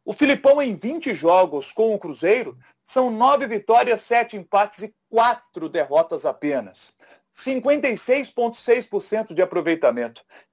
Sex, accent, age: male, Brazilian, 40-59